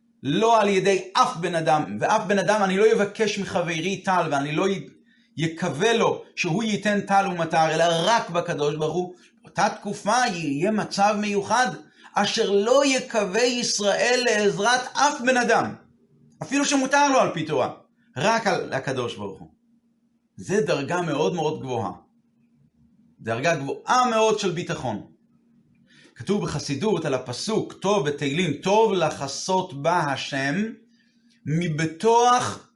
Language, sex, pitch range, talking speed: Hebrew, male, 160-225 Hz, 135 wpm